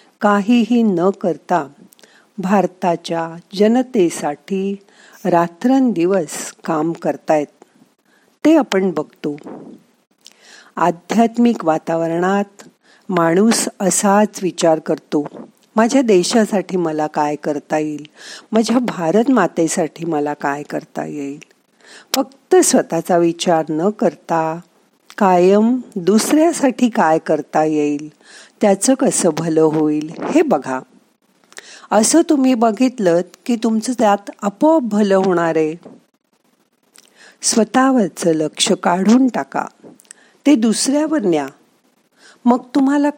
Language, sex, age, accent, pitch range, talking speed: Marathi, female, 50-69, native, 165-240 Hz, 65 wpm